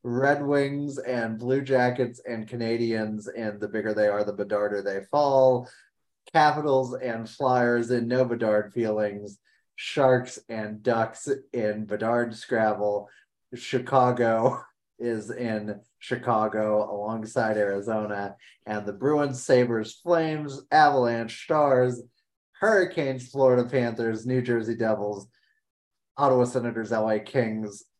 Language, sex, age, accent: English, male, 30-49, American